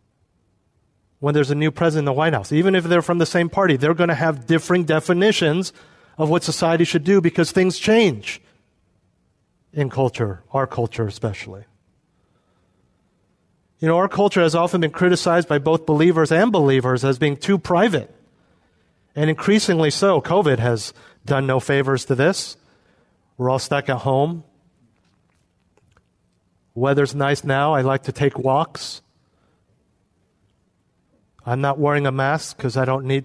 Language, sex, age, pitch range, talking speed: English, male, 40-59, 125-155 Hz, 150 wpm